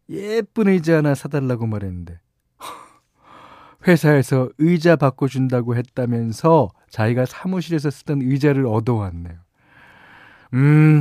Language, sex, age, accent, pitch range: Korean, male, 40-59, native, 105-160 Hz